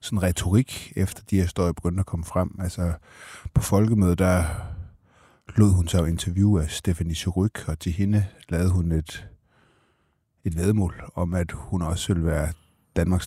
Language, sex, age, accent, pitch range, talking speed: Danish, male, 30-49, native, 85-105 Hz, 165 wpm